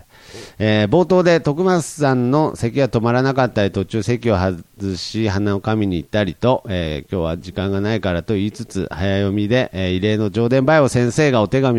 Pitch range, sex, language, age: 110-150 Hz, male, Japanese, 40-59